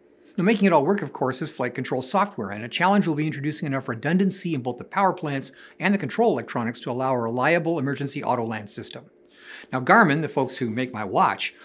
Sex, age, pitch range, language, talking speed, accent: male, 50-69, 135-185 Hz, English, 225 wpm, American